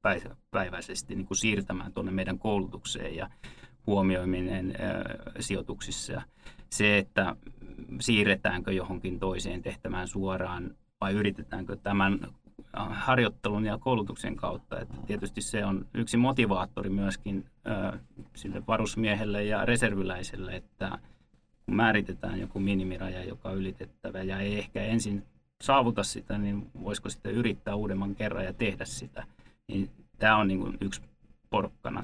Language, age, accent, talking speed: Finnish, 30-49, native, 125 wpm